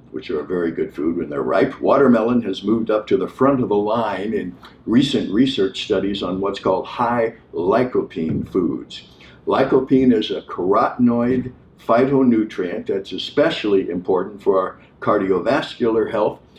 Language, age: English, 60-79